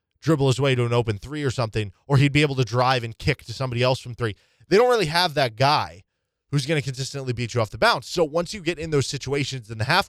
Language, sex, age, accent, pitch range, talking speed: English, male, 20-39, American, 115-160 Hz, 280 wpm